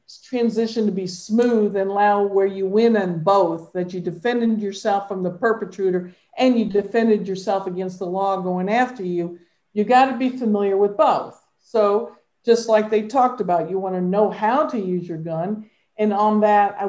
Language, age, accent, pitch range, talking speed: English, 50-69, American, 195-230 Hz, 190 wpm